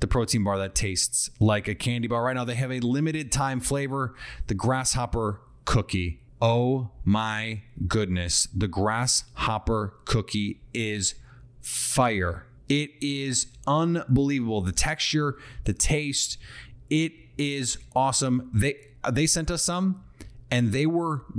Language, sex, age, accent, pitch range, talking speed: English, male, 30-49, American, 110-145 Hz, 130 wpm